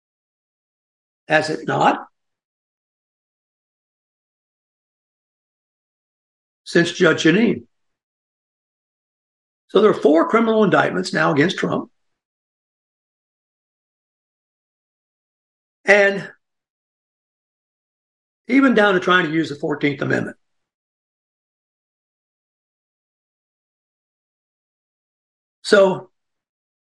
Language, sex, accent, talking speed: English, male, American, 60 wpm